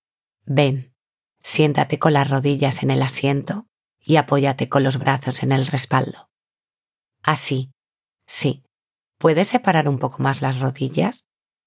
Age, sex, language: 30-49, female, Spanish